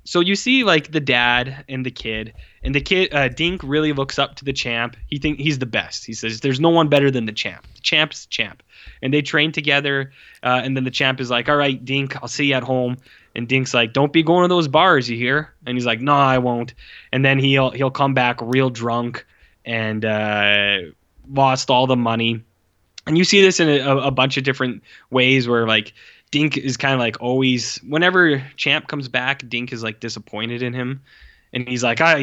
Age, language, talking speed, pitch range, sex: 10-29, English, 225 wpm, 115-140 Hz, male